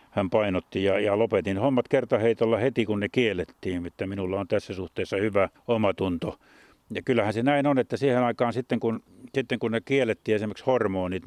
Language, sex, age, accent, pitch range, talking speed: Finnish, male, 50-69, native, 100-115 Hz, 180 wpm